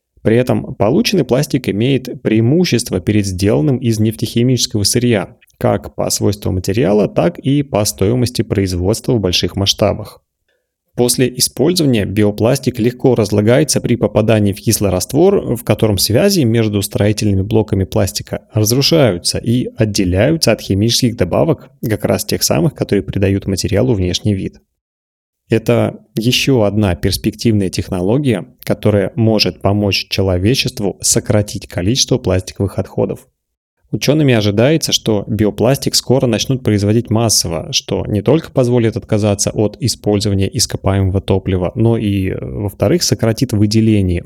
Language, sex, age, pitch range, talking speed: Russian, male, 30-49, 100-125 Hz, 120 wpm